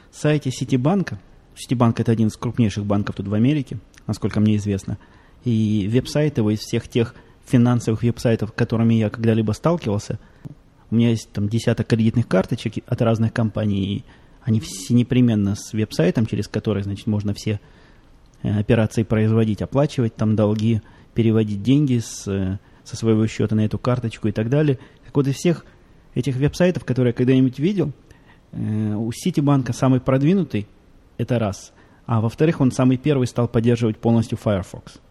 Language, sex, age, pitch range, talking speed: Russian, male, 20-39, 110-135 Hz, 150 wpm